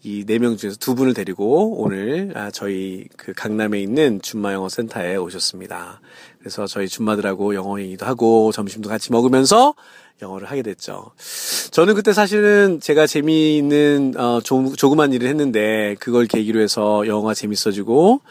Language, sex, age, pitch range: Korean, male, 40-59, 105-140 Hz